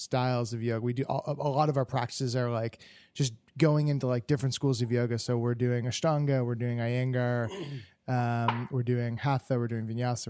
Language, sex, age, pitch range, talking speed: English, male, 20-39, 120-150 Hz, 205 wpm